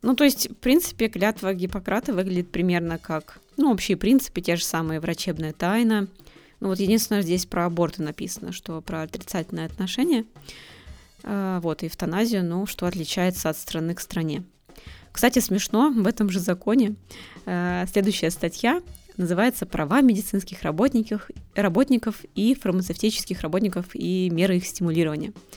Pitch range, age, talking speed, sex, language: 170-205 Hz, 20-39, 135 wpm, female, Russian